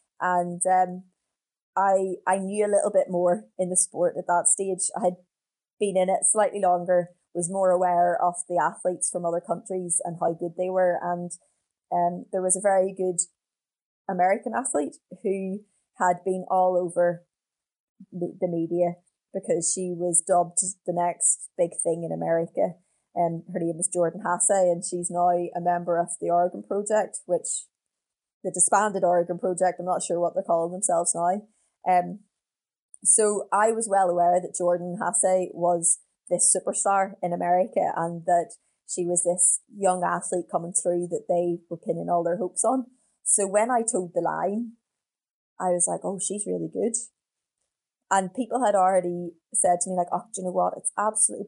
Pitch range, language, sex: 175-200 Hz, English, female